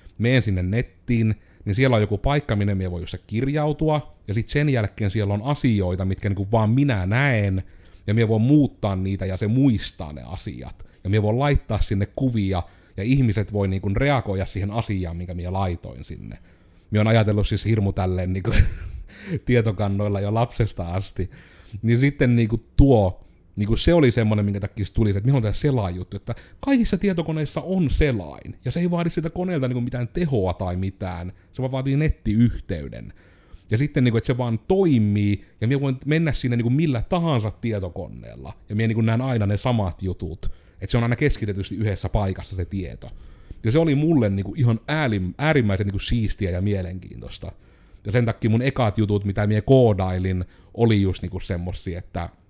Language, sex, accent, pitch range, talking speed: Finnish, male, native, 95-125 Hz, 175 wpm